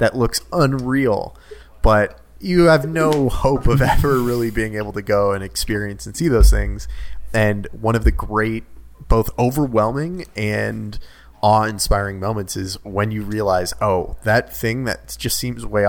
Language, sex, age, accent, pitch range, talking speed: English, male, 30-49, American, 95-125 Hz, 160 wpm